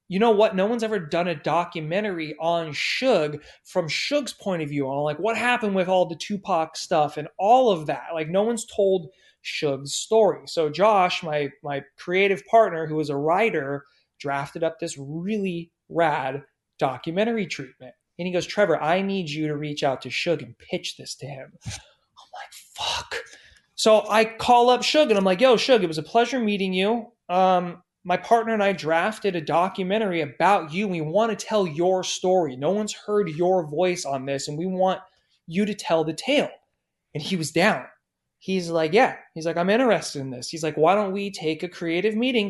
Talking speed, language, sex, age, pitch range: 200 wpm, English, male, 30-49, 160-205 Hz